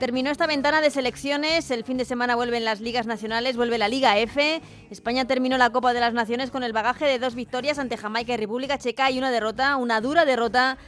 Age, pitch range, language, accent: 30-49, 215-260 Hz, Spanish, Spanish